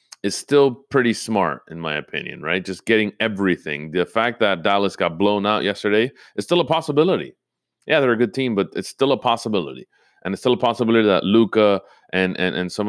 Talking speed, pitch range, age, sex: 205 wpm, 90-130 Hz, 30-49, male